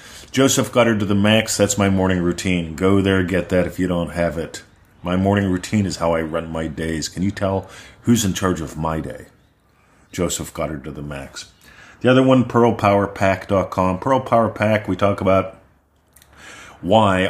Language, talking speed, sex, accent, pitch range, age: English, 180 wpm, male, American, 90-110 Hz, 40-59